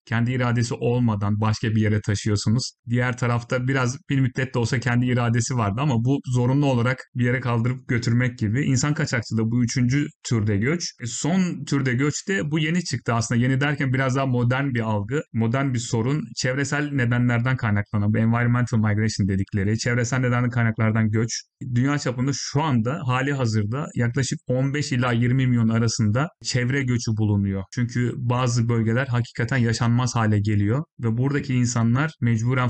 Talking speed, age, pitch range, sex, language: 160 wpm, 30-49, 115-130 Hz, male, Turkish